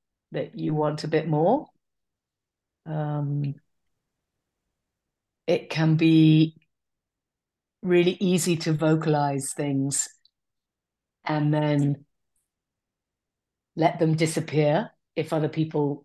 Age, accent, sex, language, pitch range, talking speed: 40-59, British, female, English, 145-195 Hz, 85 wpm